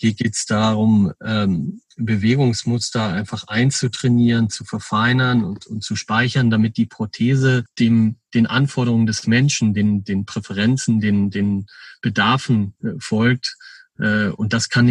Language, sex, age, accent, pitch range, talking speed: German, male, 40-59, German, 100-115 Hz, 125 wpm